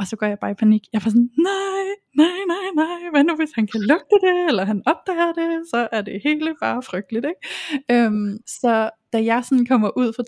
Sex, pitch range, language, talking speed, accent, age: female, 205-240 Hz, Danish, 240 wpm, native, 20-39